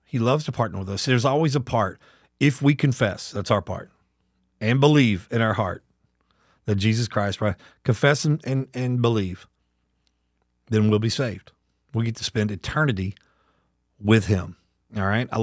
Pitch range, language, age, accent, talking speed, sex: 95-125 Hz, English, 40-59, American, 170 wpm, male